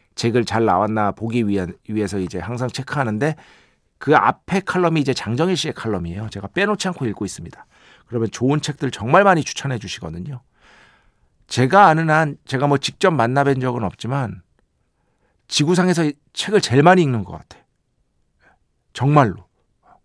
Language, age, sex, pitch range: Korean, 50-69, male, 105-150 Hz